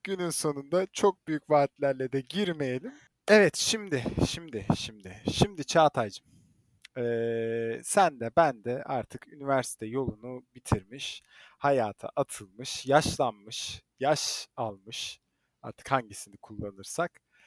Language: Turkish